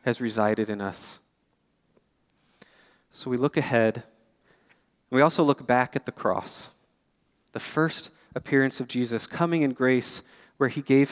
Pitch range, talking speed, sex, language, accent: 120-145 Hz, 140 wpm, male, English, American